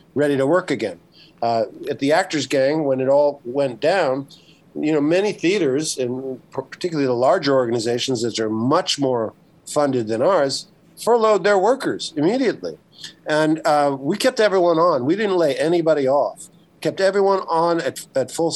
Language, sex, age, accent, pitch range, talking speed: English, male, 50-69, American, 135-175 Hz, 165 wpm